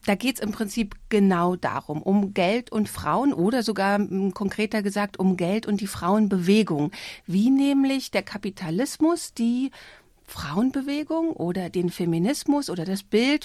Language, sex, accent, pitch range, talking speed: German, female, German, 195-245 Hz, 145 wpm